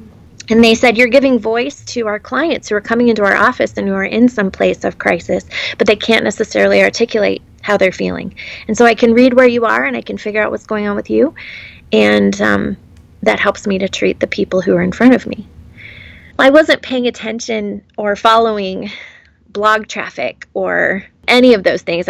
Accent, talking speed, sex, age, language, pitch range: American, 210 wpm, female, 20-39, English, 190-230 Hz